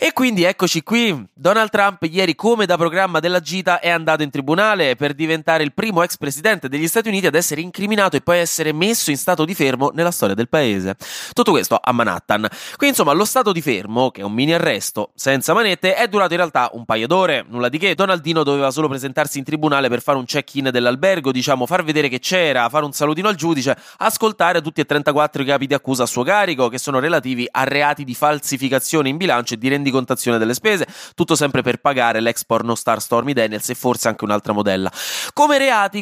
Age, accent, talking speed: 20-39, native, 215 wpm